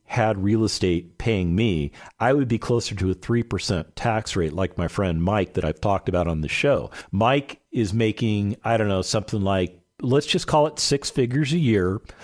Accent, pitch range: American, 100-135 Hz